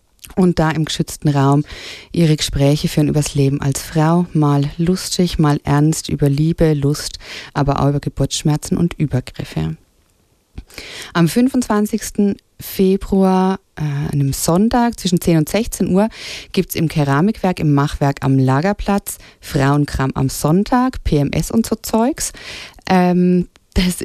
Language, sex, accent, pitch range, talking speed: English, female, German, 140-185 Hz, 135 wpm